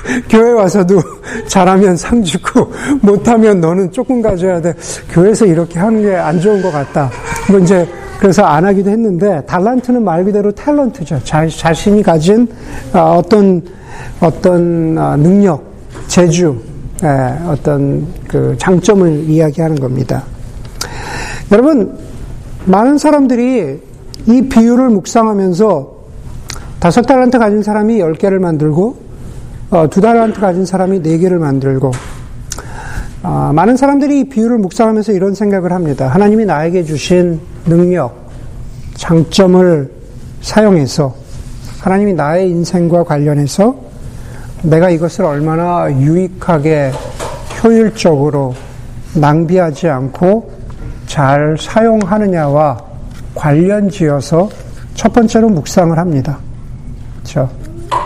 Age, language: 50-69, Korean